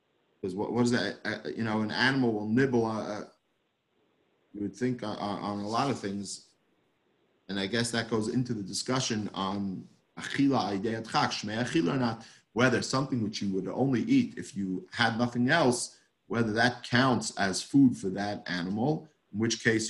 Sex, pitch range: male, 105-125 Hz